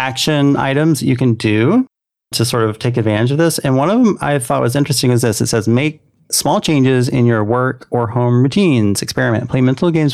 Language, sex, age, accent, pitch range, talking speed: English, male, 30-49, American, 110-135 Hz, 220 wpm